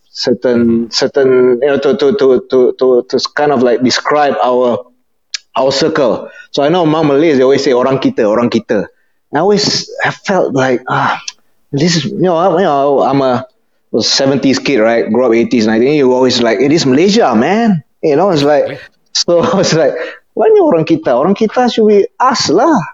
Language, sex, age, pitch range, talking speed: English, male, 20-39, 130-170 Hz, 205 wpm